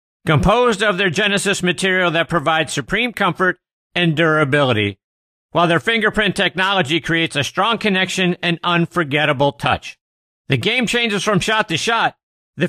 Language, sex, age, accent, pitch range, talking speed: English, male, 50-69, American, 140-190 Hz, 140 wpm